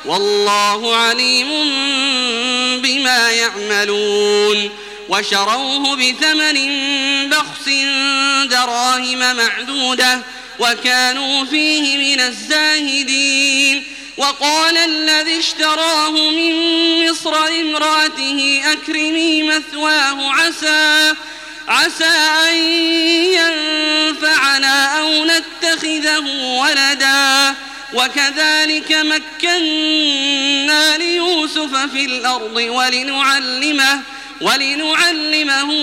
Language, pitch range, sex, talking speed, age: Arabic, 250-310 Hz, male, 60 wpm, 30-49